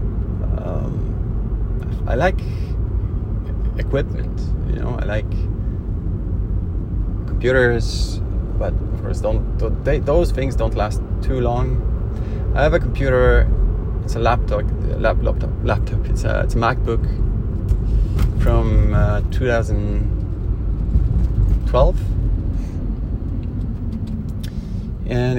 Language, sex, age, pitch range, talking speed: English, male, 30-49, 95-115 Hz, 90 wpm